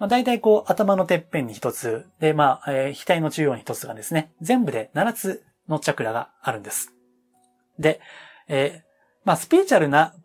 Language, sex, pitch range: Japanese, male, 130-210 Hz